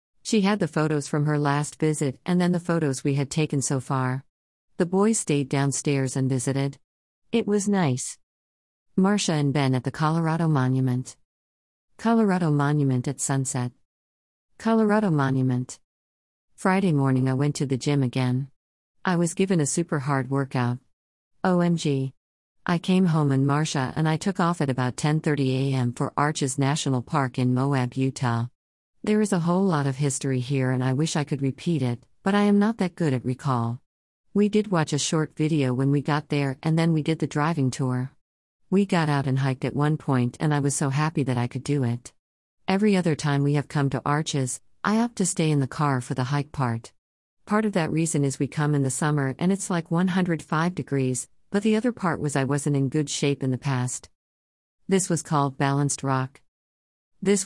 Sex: female